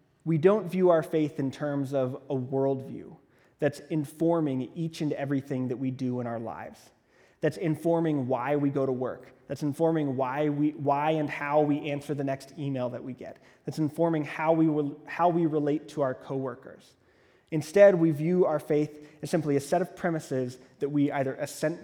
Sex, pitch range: male, 135-165 Hz